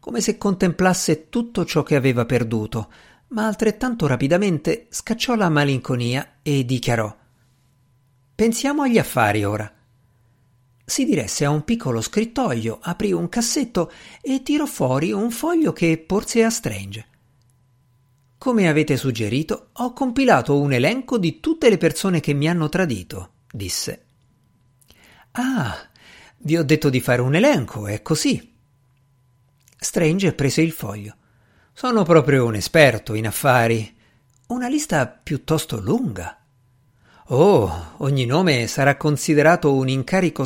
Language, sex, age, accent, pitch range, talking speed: Italian, male, 50-69, native, 125-185 Hz, 125 wpm